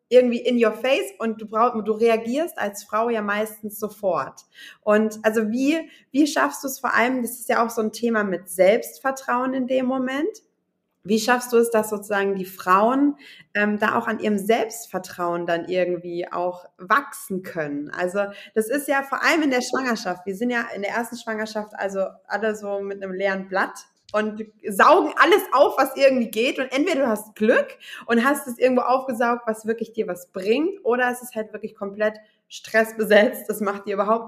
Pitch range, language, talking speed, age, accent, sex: 205-255 Hz, German, 190 wpm, 20-39, German, female